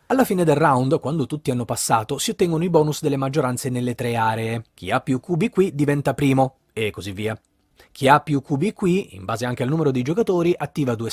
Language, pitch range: Italian, 120-165 Hz